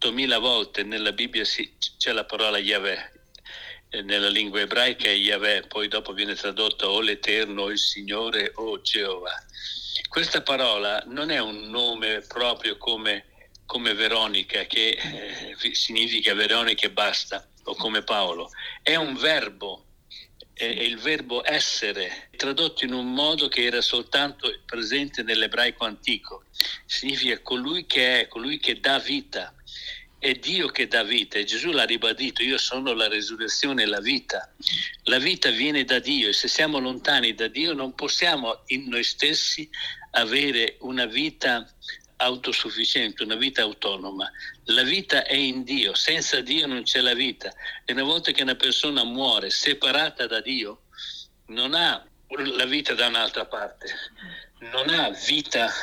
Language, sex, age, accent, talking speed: Italian, male, 60-79, native, 150 wpm